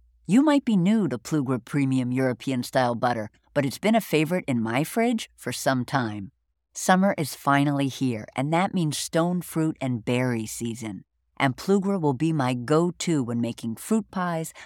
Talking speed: 180 wpm